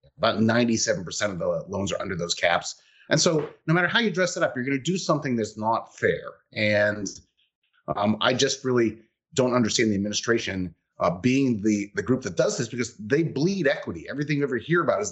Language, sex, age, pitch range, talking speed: English, male, 30-49, 105-150 Hz, 210 wpm